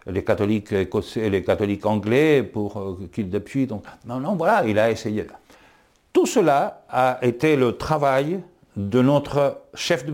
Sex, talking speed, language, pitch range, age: male, 155 wpm, French, 95-125 Hz, 60-79